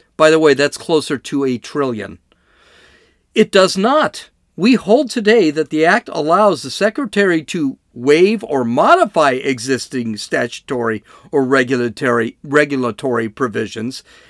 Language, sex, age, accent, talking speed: English, male, 50-69, American, 125 wpm